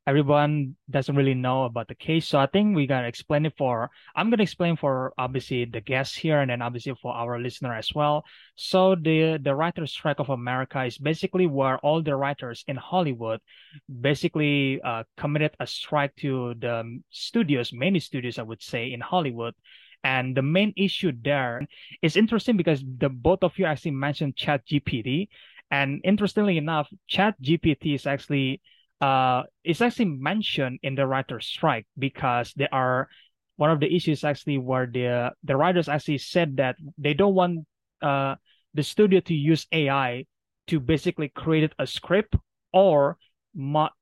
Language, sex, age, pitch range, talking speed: Indonesian, male, 20-39, 130-160 Hz, 170 wpm